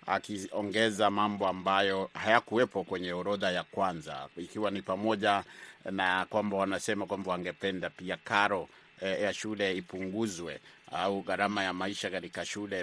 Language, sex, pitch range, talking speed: Swahili, male, 105-125 Hz, 135 wpm